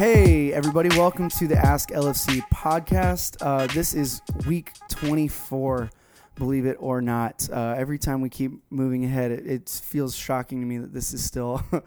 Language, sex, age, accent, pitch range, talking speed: English, male, 20-39, American, 125-140 Hz, 170 wpm